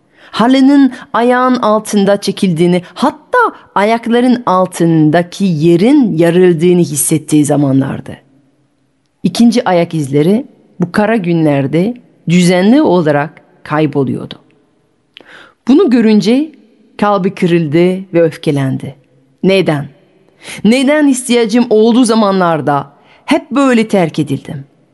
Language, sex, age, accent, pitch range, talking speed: Turkish, female, 40-59, native, 155-220 Hz, 85 wpm